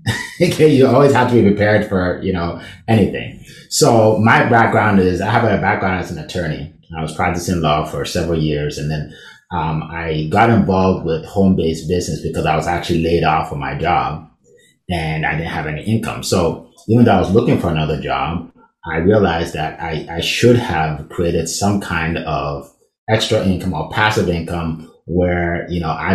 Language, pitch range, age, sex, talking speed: English, 80-100 Hz, 30-49, male, 190 wpm